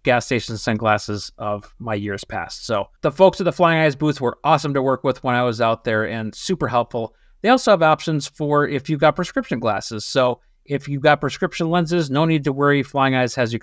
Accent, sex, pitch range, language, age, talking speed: American, male, 120-165 Hz, English, 30-49, 230 wpm